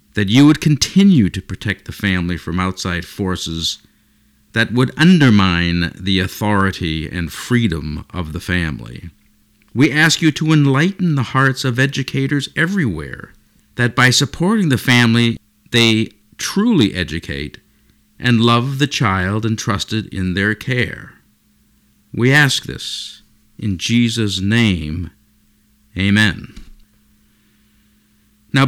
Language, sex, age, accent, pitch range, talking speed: English, male, 50-69, American, 95-130 Hz, 115 wpm